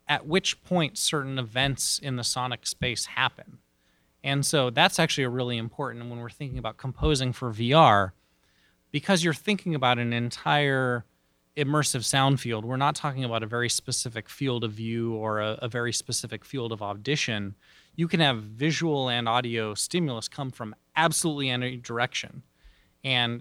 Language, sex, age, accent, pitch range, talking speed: English, male, 20-39, American, 120-150 Hz, 160 wpm